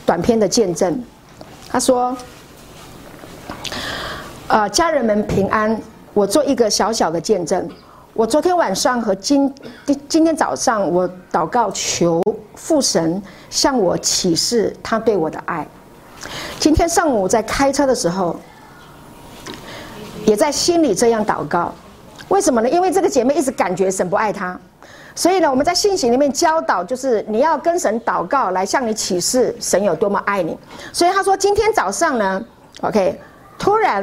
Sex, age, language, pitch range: female, 50-69, Chinese, 210-320 Hz